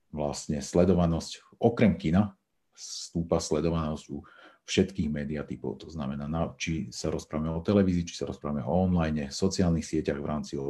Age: 40-59